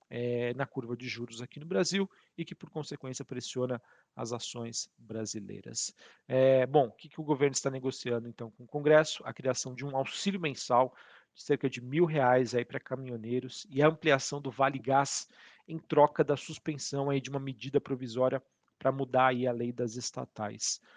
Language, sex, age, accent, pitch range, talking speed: Portuguese, male, 40-59, Brazilian, 125-140 Hz, 185 wpm